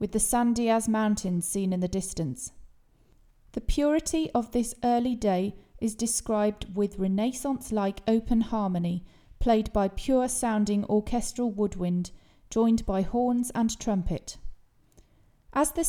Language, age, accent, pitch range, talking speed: English, 30-49, British, 190-240 Hz, 125 wpm